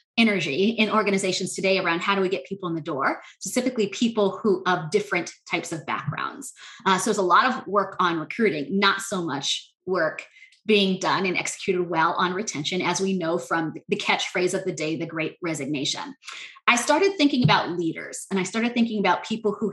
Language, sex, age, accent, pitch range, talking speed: English, female, 20-39, American, 175-220 Hz, 200 wpm